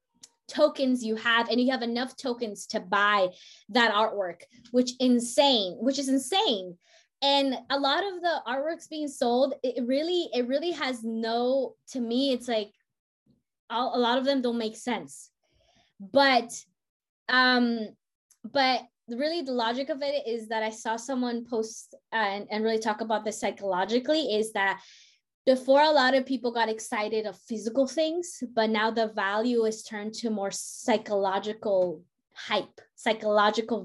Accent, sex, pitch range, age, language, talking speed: American, female, 220-270 Hz, 20-39, English, 155 wpm